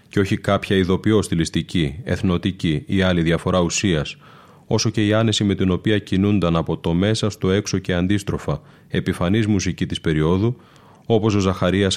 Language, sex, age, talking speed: Greek, male, 30-49, 155 wpm